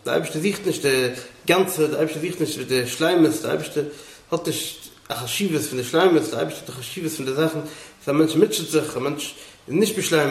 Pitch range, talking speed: 140-165 Hz, 225 wpm